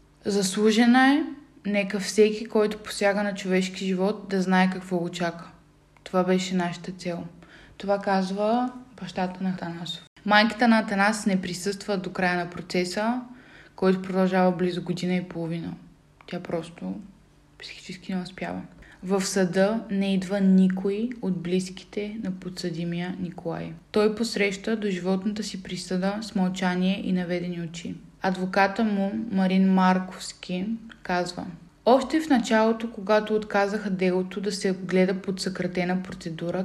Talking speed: 135 wpm